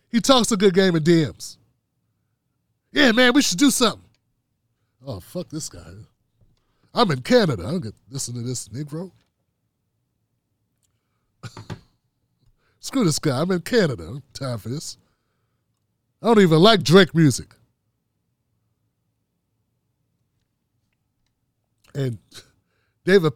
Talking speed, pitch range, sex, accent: 120 wpm, 115-195 Hz, male, American